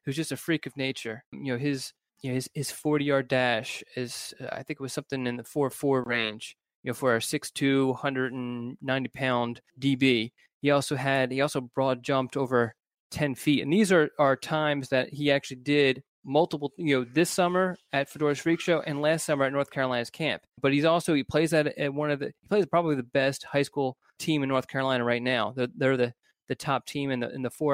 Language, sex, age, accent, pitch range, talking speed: English, male, 20-39, American, 125-145 Hz, 230 wpm